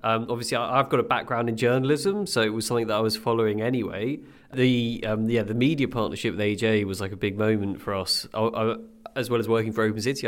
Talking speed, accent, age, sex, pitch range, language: 240 wpm, British, 30-49, male, 105-125 Hz, English